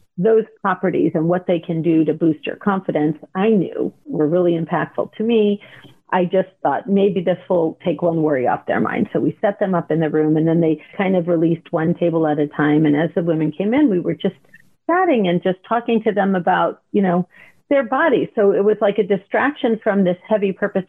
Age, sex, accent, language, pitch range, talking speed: 50-69, female, American, English, 180-225 Hz, 225 wpm